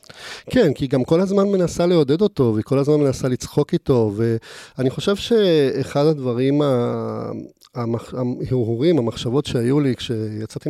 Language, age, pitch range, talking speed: Hebrew, 30-49, 125-165 Hz, 135 wpm